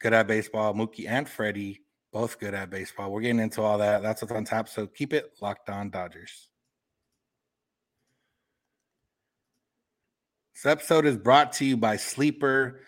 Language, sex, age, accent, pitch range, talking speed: English, male, 30-49, American, 105-125 Hz, 155 wpm